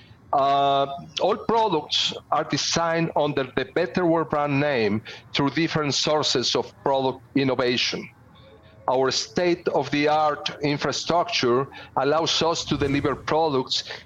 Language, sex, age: English, male, 40-59